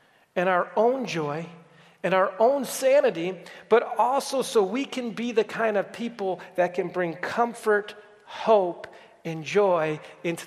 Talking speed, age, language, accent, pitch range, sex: 150 wpm, 40-59, English, American, 175-235 Hz, male